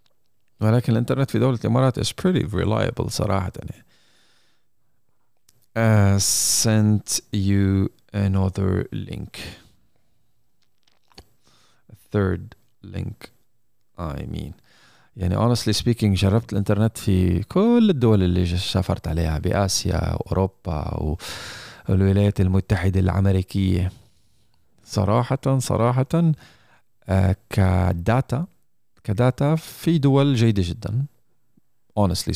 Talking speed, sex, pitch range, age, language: 85 wpm, male, 95-115 Hz, 40-59, Arabic